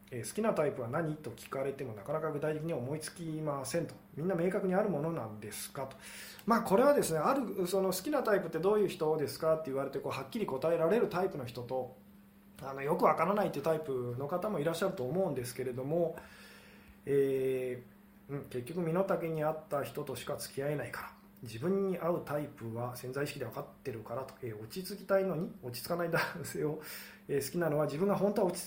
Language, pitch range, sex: Japanese, 130-175 Hz, male